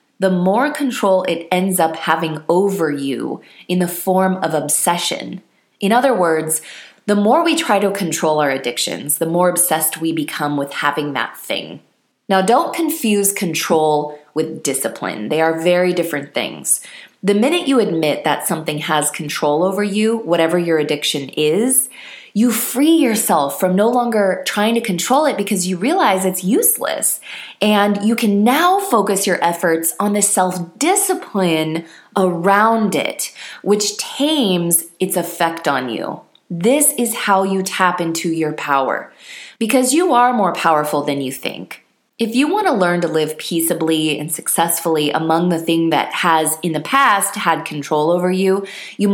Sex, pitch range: female, 160-215 Hz